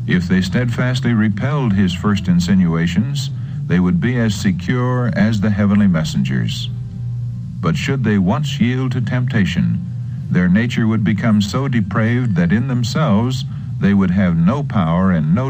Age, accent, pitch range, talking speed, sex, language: 60-79, American, 105-135 Hz, 150 wpm, male, English